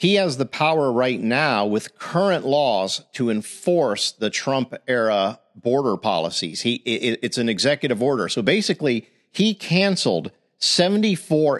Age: 50-69